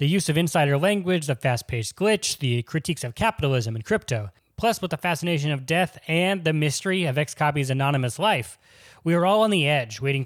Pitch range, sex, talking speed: 125-170 Hz, male, 200 wpm